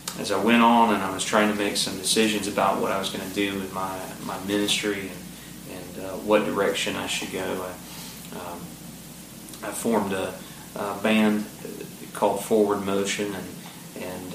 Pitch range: 100-105 Hz